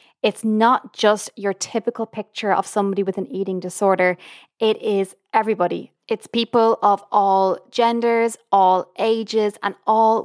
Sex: female